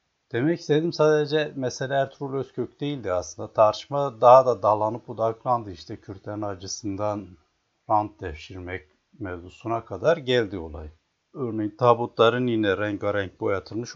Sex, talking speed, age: male, 120 wpm, 60-79